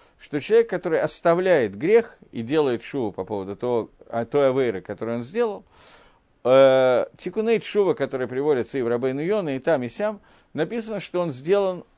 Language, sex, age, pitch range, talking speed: Russian, male, 50-69, 125-195 Hz, 160 wpm